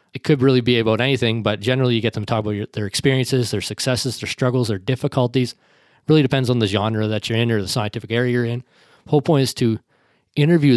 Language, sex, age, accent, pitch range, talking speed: English, male, 20-39, American, 110-130 Hz, 240 wpm